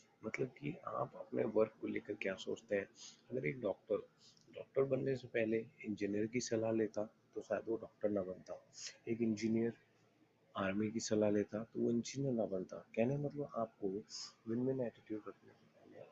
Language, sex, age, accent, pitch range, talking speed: Hindi, male, 30-49, native, 105-125 Hz, 170 wpm